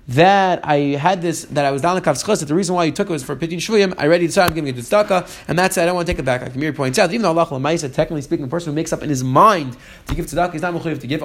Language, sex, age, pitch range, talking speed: English, male, 30-49, 145-185 Hz, 345 wpm